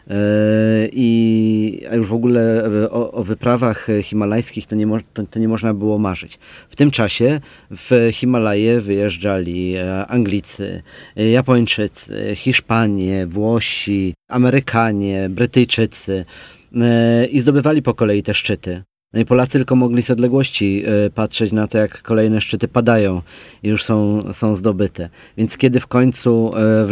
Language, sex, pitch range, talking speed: Polish, male, 105-125 Hz, 125 wpm